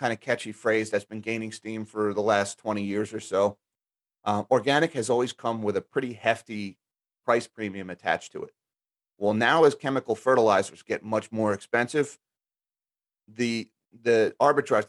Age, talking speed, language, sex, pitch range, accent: 30-49, 165 wpm, English, male, 100-115 Hz, American